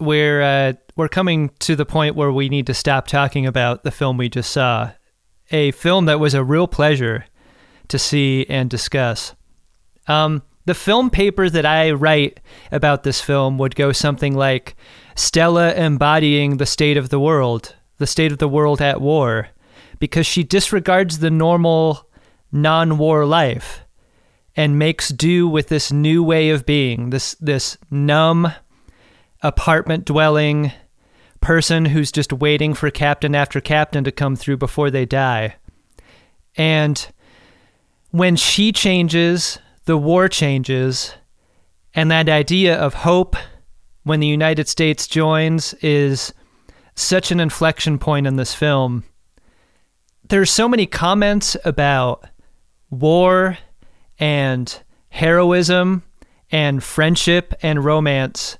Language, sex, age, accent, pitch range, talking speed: English, male, 30-49, American, 135-160 Hz, 135 wpm